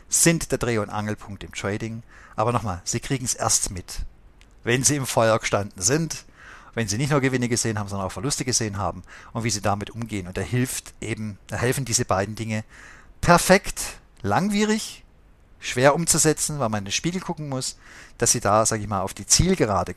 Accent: German